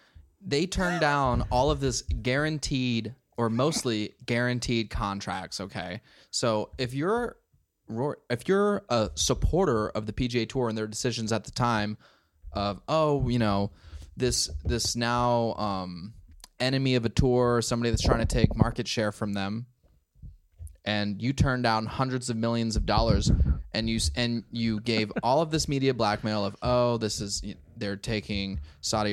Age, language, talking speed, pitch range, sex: 20-39, English, 160 wpm, 105-145 Hz, male